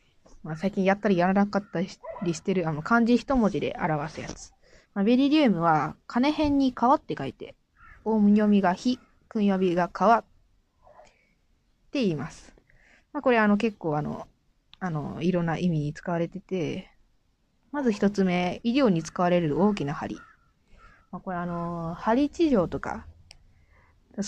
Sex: female